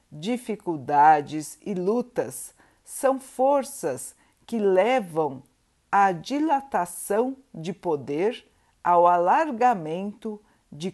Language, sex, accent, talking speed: Portuguese, female, Brazilian, 75 wpm